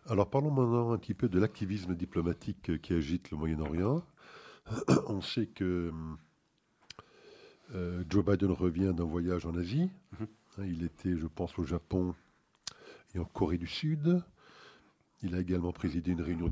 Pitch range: 90-115 Hz